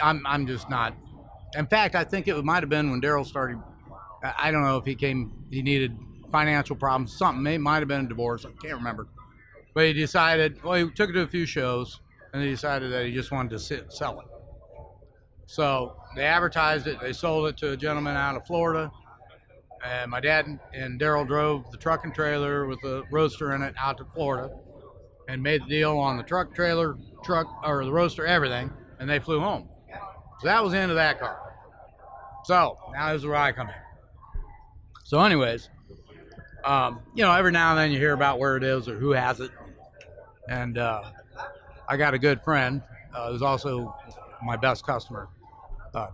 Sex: male